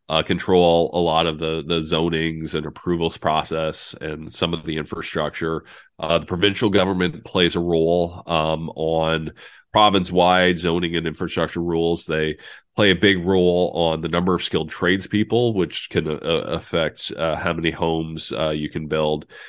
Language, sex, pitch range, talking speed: English, male, 80-90 Hz, 165 wpm